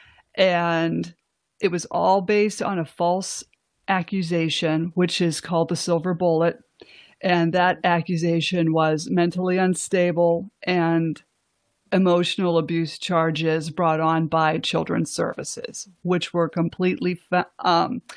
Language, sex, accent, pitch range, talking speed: English, female, American, 165-185 Hz, 110 wpm